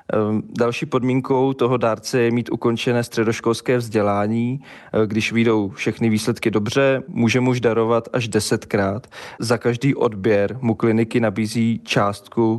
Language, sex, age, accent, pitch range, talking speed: Czech, male, 20-39, native, 110-120 Hz, 125 wpm